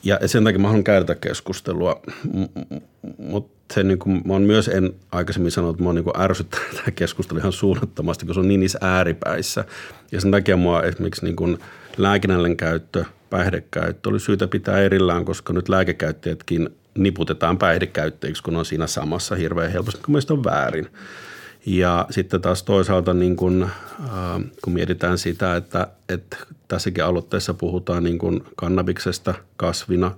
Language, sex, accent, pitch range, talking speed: Finnish, male, native, 85-95 Hz, 150 wpm